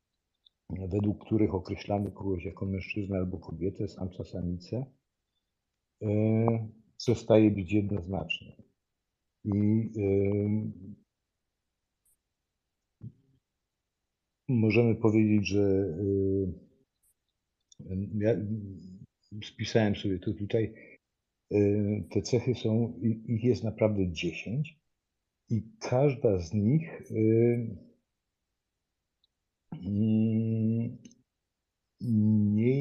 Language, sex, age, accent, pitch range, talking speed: Polish, male, 50-69, native, 100-115 Hz, 70 wpm